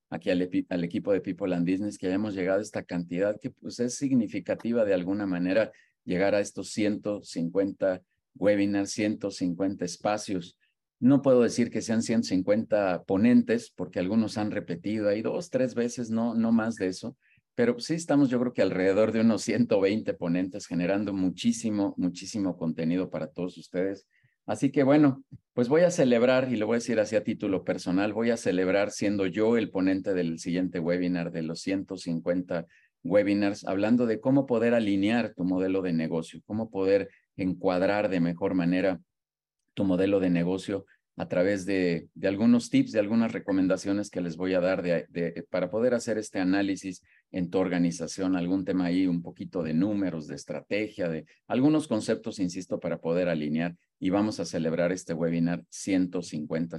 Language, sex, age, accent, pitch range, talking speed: Spanish, male, 40-59, Mexican, 90-120 Hz, 170 wpm